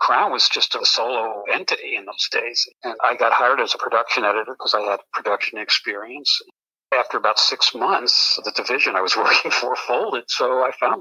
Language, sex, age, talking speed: English, male, 60-79, 195 wpm